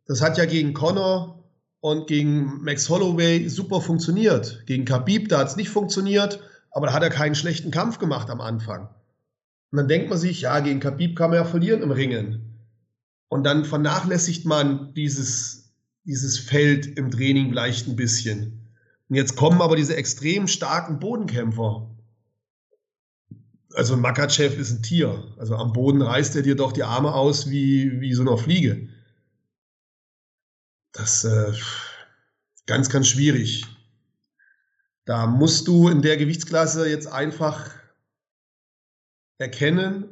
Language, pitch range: German, 120-155 Hz